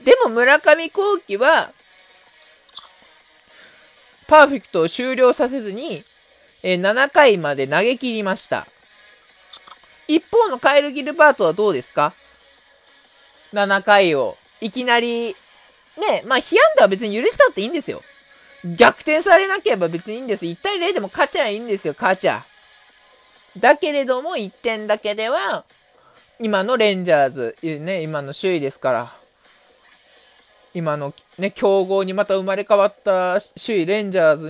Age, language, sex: 20-39, Japanese, male